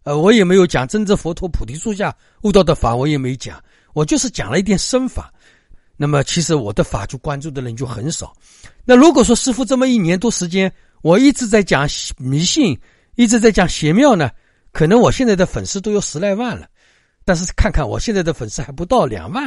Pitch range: 125-205 Hz